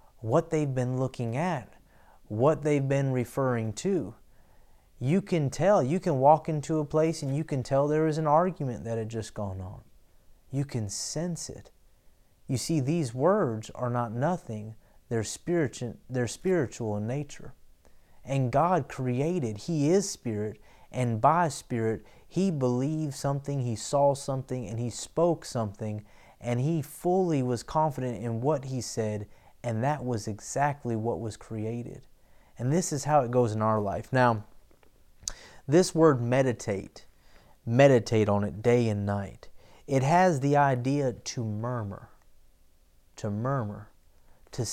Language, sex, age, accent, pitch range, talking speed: English, male, 30-49, American, 110-150 Hz, 150 wpm